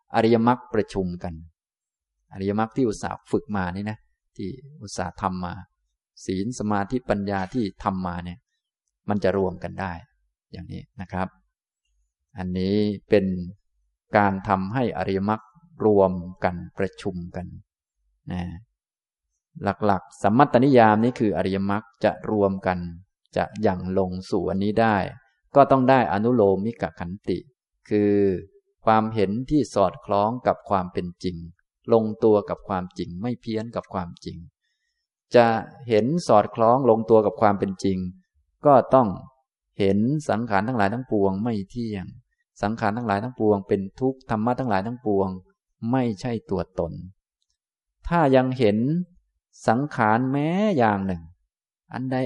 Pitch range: 95-120 Hz